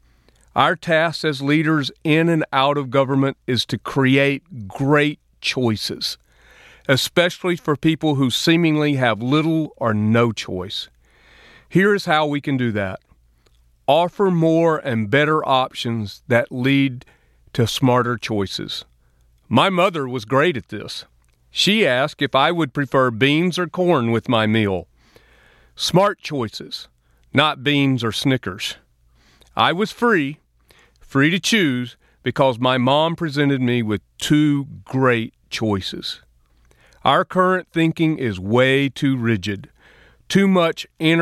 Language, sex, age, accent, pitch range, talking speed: English, male, 40-59, American, 115-155 Hz, 130 wpm